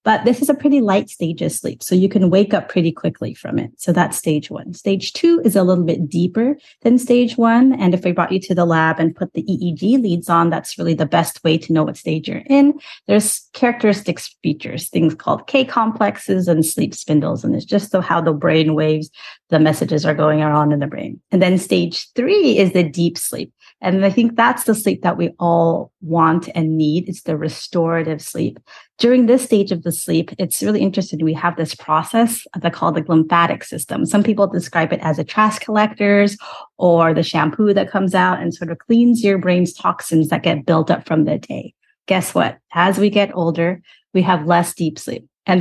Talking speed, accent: 215 wpm, American